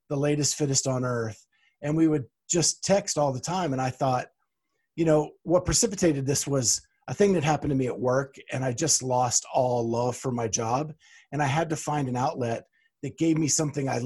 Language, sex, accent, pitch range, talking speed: English, male, American, 130-165 Hz, 220 wpm